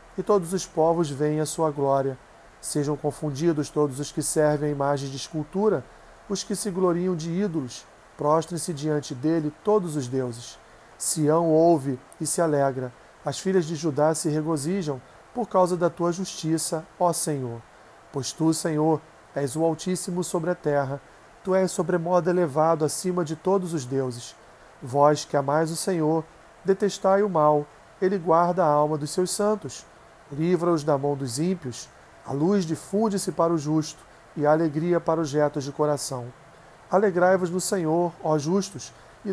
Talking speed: 160 wpm